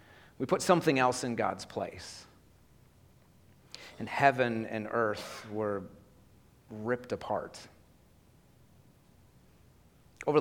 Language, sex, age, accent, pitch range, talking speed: English, male, 30-49, American, 115-140 Hz, 85 wpm